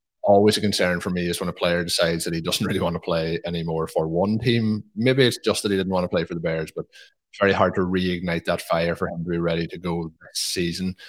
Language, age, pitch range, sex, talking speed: English, 20-39, 85-100 Hz, male, 270 wpm